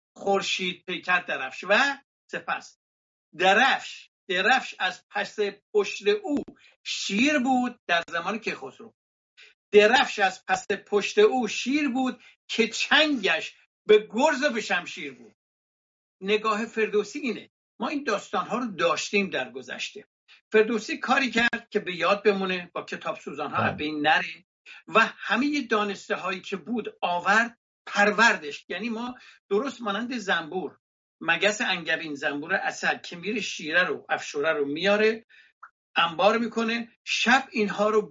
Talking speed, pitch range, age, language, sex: 135 wpm, 195-250 Hz, 60-79, English, male